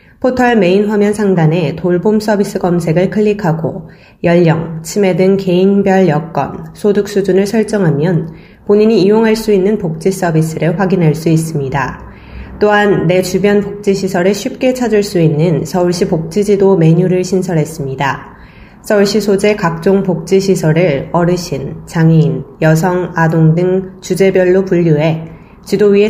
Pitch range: 165-200 Hz